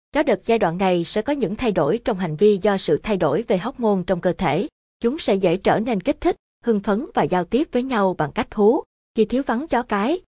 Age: 20-39